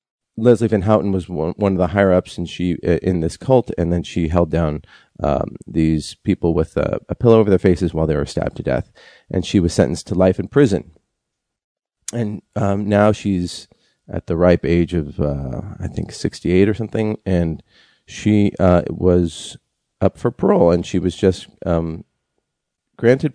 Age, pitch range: 40-59, 85-105 Hz